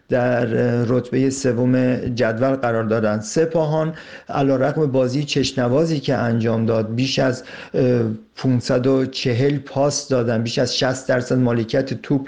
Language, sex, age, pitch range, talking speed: Persian, male, 50-69, 125-145 Hz, 120 wpm